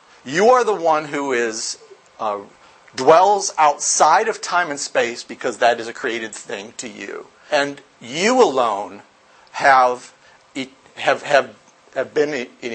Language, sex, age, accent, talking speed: English, male, 50-69, American, 150 wpm